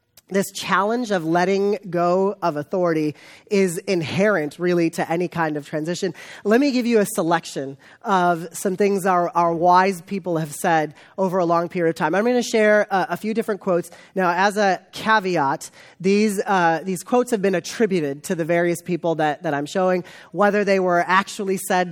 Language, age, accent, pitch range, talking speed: English, 30-49, American, 165-205 Hz, 190 wpm